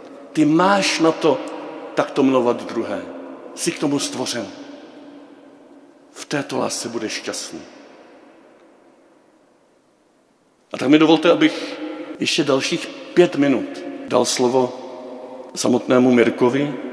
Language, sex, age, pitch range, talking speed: Czech, male, 50-69, 120-160 Hz, 105 wpm